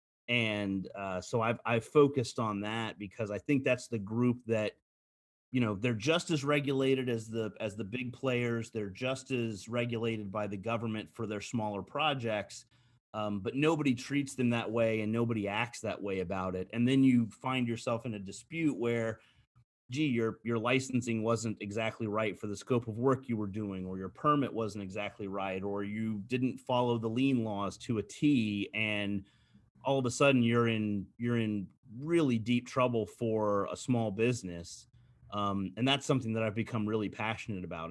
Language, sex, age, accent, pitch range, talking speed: English, male, 30-49, American, 105-125 Hz, 185 wpm